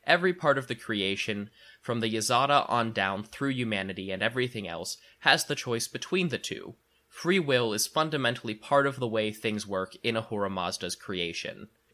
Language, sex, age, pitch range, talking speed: English, male, 20-39, 105-130 Hz, 175 wpm